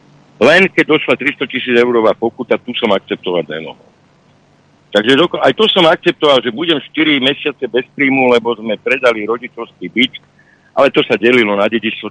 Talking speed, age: 170 wpm, 60-79